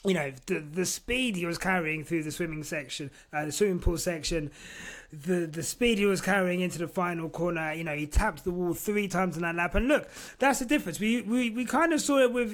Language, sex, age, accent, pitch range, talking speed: English, male, 30-49, British, 170-235 Hz, 245 wpm